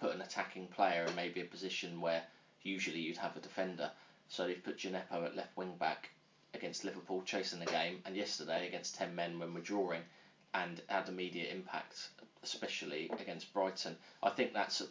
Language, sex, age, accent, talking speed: English, male, 20-39, British, 180 wpm